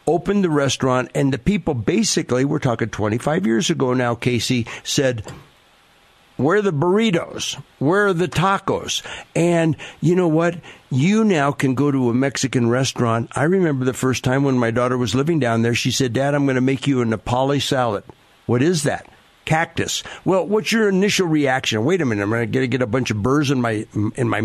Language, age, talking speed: English, 60-79, 205 wpm